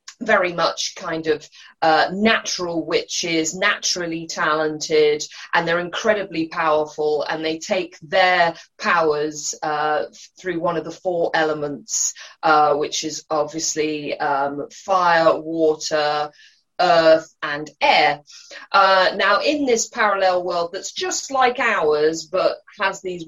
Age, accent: 30-49, British